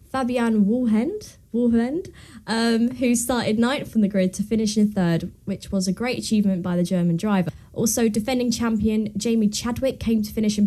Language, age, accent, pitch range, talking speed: English, 20-39, British, 190-240 Hz, 180 wpm